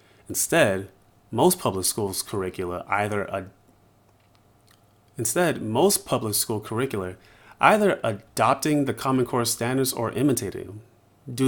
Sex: male